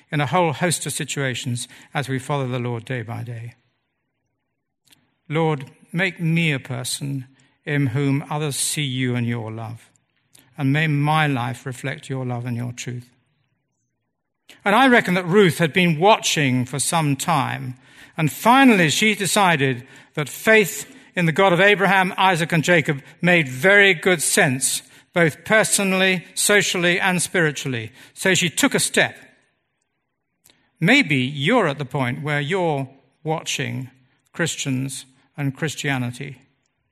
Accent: British